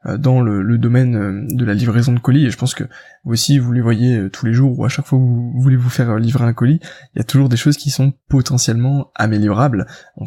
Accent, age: French, 20-39